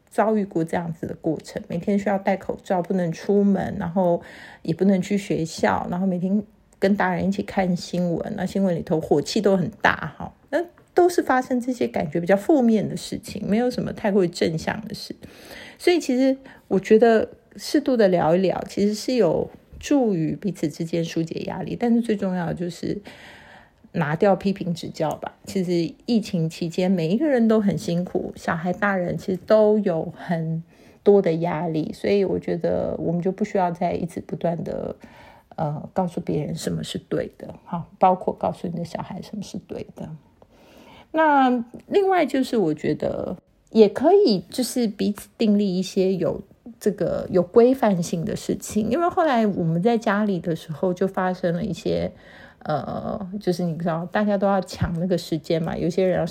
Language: Chinese